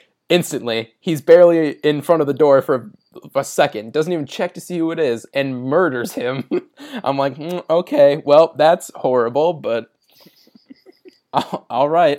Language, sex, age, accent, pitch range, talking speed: English, male, 20-39, American, 120-160 Hz, 160 wpm